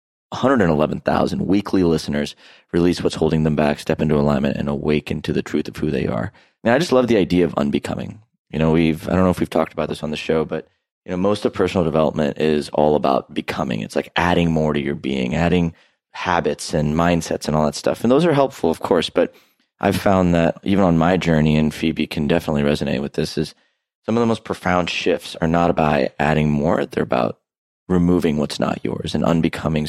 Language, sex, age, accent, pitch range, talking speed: English, male, 30-49, American, 75-90 Hz, 220 wpm